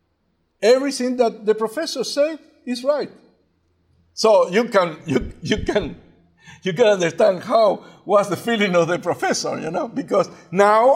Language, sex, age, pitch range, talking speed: English, male, 60-79, 165-225 Hz, 125 wpm